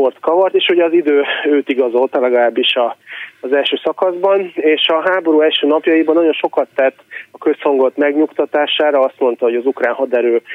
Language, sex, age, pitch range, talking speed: Hungarian, male, 30-49, 125-150 Hz, 165 wpm